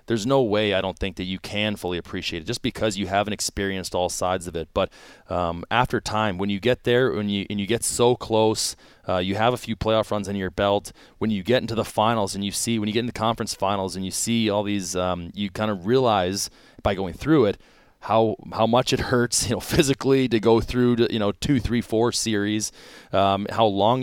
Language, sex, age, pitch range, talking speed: English, male, 20-39, 100-120 Hz, 240 wpm